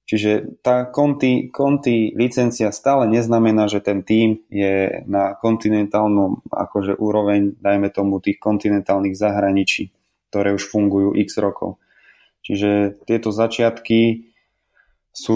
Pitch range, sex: 100-110 Hz, male